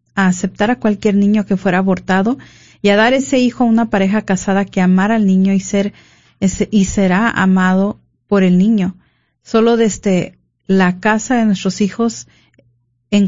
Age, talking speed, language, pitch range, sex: 40-59, 165 wpm, Spanish, 190-220 Hz, female